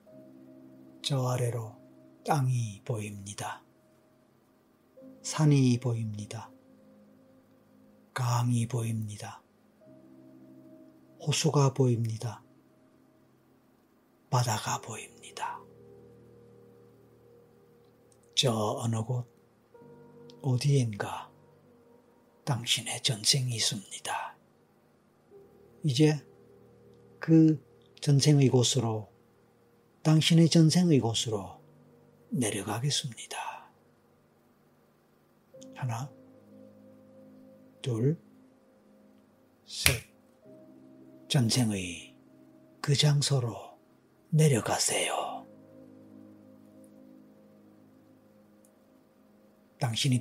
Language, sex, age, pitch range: Korean, male, 40-59, 105-140 Hz